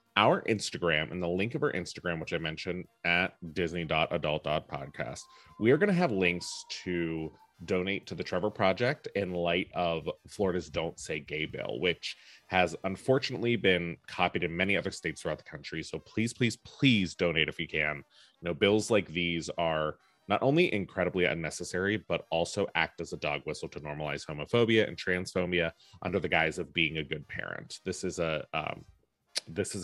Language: English